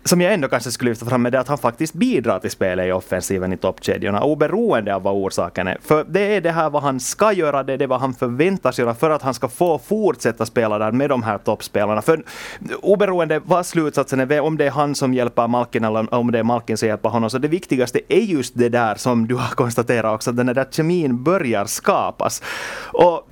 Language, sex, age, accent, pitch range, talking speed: Swedish, male, 30-49, Finnish, 120-170 Hz, 235 wpm